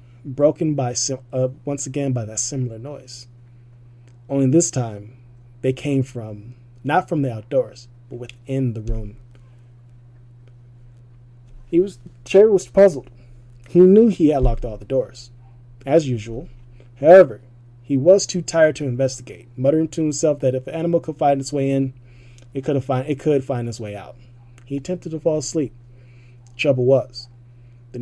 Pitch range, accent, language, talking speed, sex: 120-135 Hz, American, English, 160 wpm, male